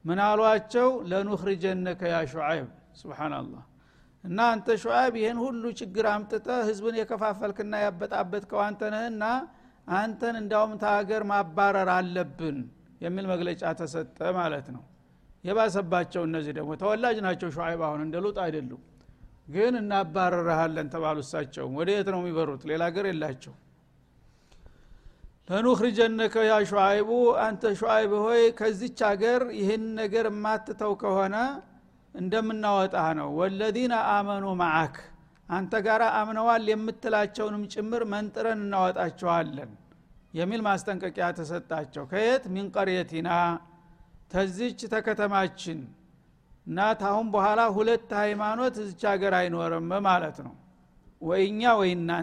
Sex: male